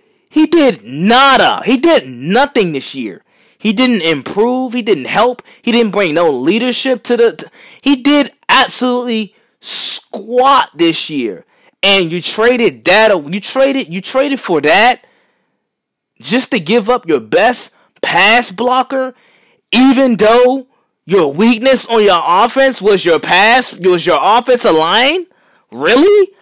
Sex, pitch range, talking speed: male, 185-265 Hz, 135 wpm